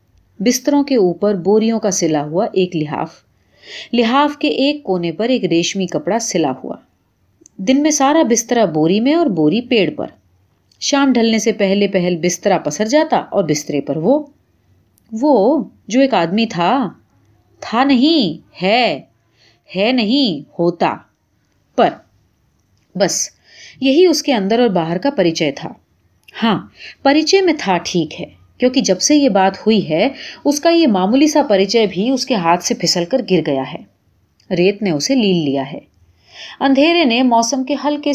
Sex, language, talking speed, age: female, Urdu, 160 wpm, 30-49